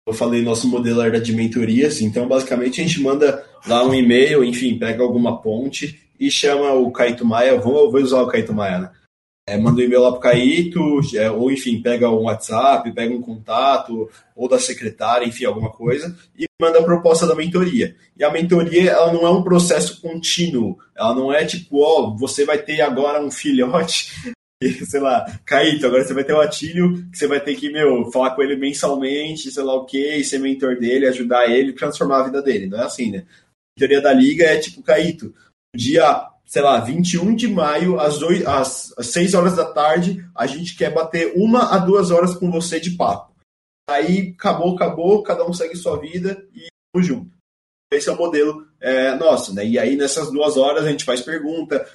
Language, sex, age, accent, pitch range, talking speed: Portuguese, male, 20-39, Brazilian, 125-165 Hz, 205 wpm